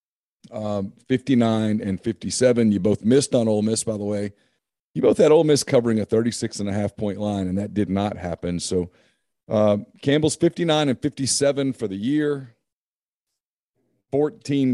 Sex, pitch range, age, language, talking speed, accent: male, 100-125 Hz, 40-59, English, 170 wpm, American